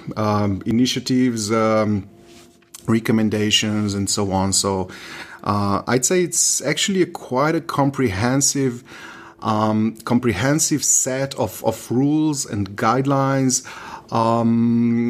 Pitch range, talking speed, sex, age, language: 100-125 Hz, 105 wpm, male, 30-49, English